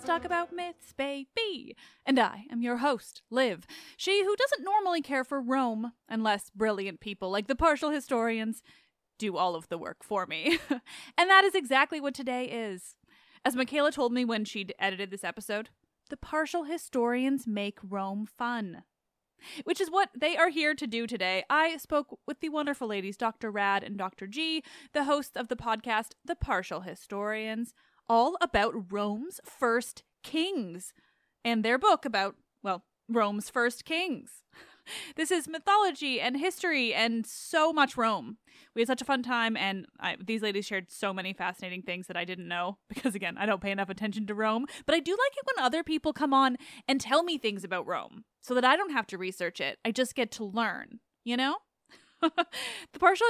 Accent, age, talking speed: American, 20-39, 185 wpm